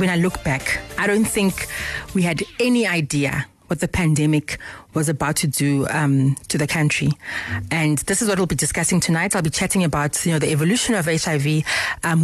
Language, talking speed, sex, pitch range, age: English, 200 wpm, female, 155-195 Hz, 30-49